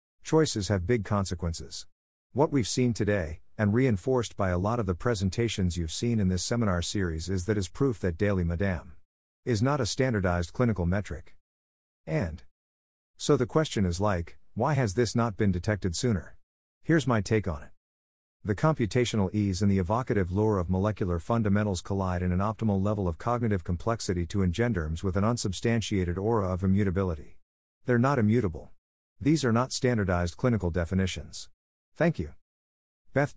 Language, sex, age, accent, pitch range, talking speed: English, male, 50-69, American, 85-115 Hz, 165 wpm